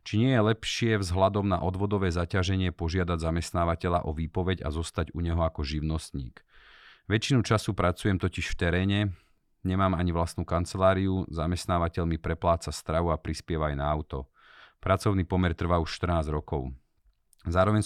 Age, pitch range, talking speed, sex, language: 40-59, 80-95 Hz, 150 wpm, male, Slovak